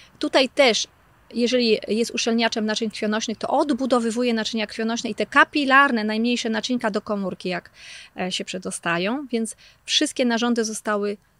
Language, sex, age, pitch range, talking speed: Polish, female, 30-49, 210-255 Hz, 130 wpm